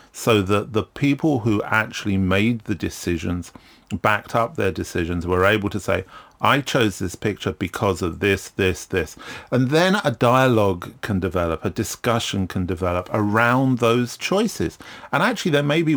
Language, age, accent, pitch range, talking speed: English, 40-59, British, 95-145 Hz, 165 wpm